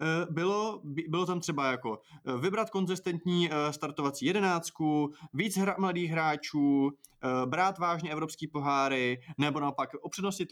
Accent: native